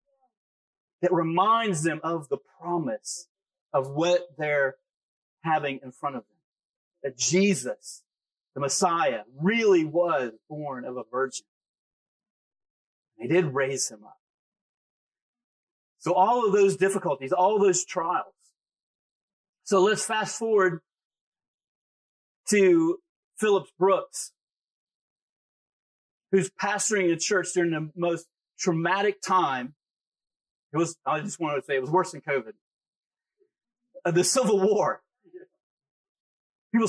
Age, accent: 40-59, American